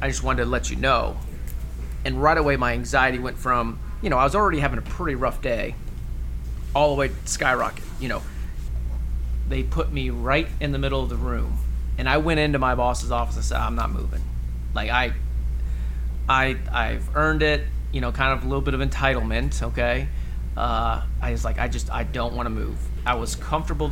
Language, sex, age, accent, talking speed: English, male, 30-49, American, 210 wpm